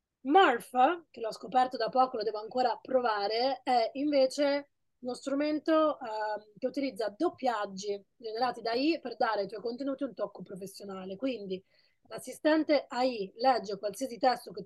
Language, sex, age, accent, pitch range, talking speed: Italian, female, 20-39, native, 205-270 Hz, 145 wpm